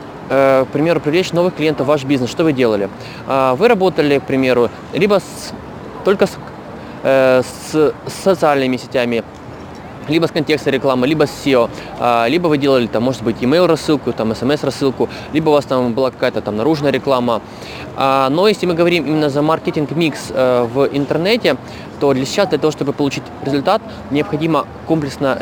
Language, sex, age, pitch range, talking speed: Russian, male, 20-39, 130-160 Hz, 165 wpm